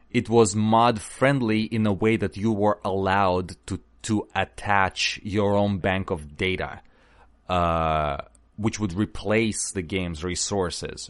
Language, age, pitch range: English, 30-49, 90-110 Hz